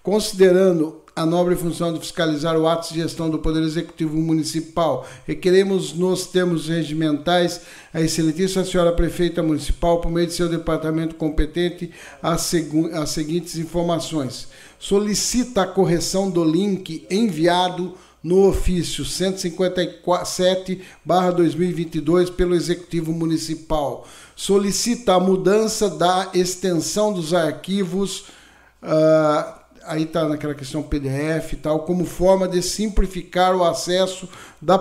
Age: 50-69